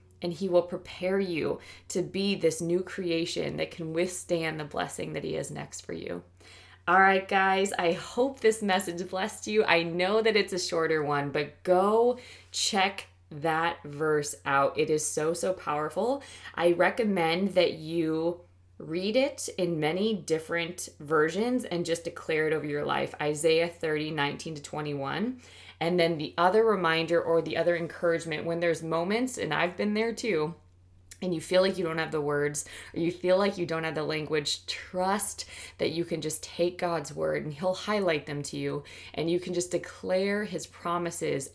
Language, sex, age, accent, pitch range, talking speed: English, female, 20-39, American, 155-185 Hz, 180 wpm